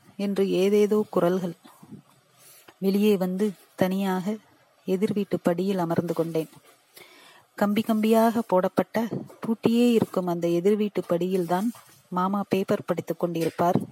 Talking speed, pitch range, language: 100 wpm, 180-220 Hz, Tamil